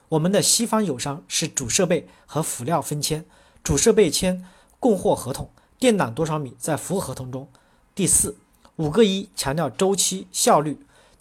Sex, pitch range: male, 140-200 Hz